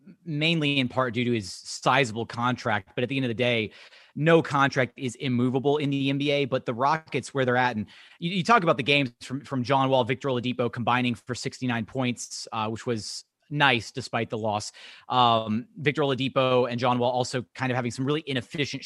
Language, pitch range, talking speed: English, 125-145 Hz, 205 wpm